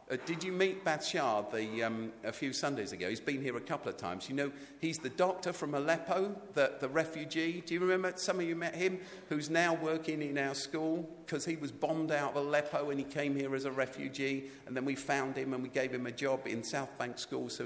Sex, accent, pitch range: male, British, 115-160 Hz